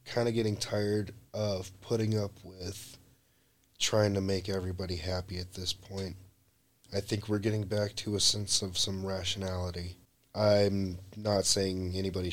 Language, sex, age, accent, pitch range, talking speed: English, male, 20-39, American, 95-125 Hz, 150 wpm